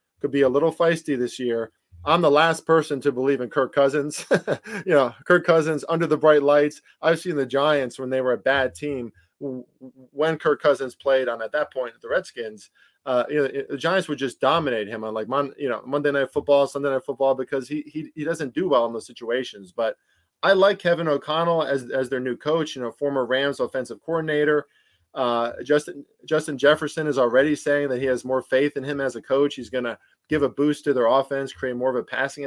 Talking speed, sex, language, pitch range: 225 wpm, male, English, 130-150 Hz